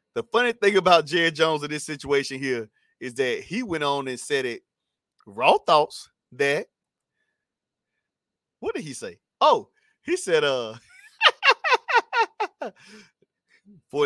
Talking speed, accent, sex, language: 125 wpm, American, male, English